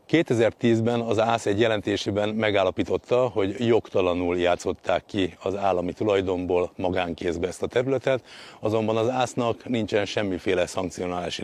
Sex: male